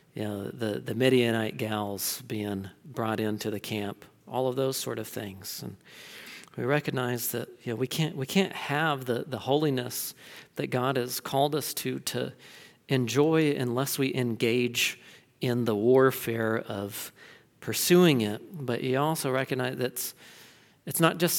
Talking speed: 160 wpm